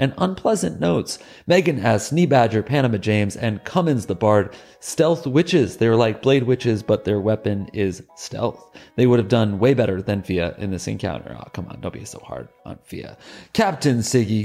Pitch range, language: 110-150 Hz, English